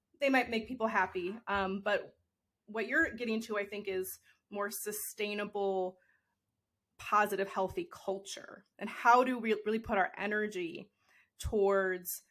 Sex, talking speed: female, 135 wpm